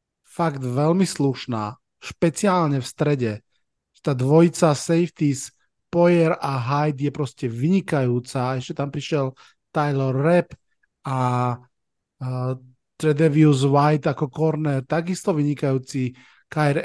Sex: male